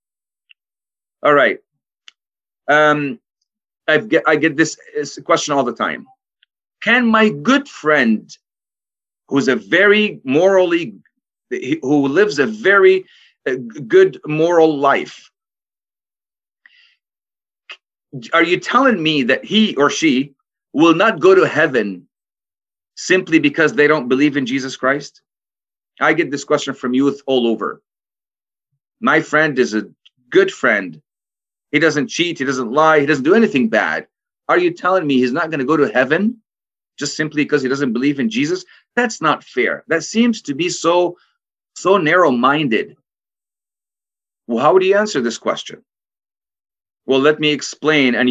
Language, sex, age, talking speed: Arabic, male, 30-49, 140 wpm